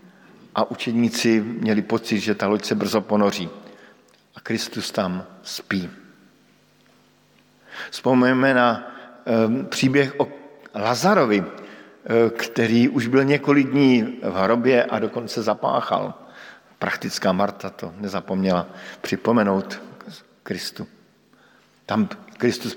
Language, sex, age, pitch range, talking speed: Slovak, male, 50-69, 110-140 Hz, 105 wpm